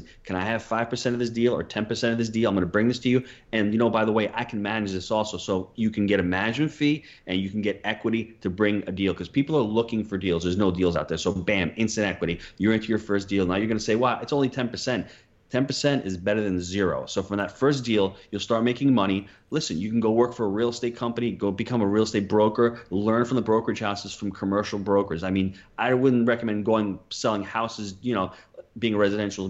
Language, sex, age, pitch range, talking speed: English, male, 30-49, 95-120 Hz, 265 wpm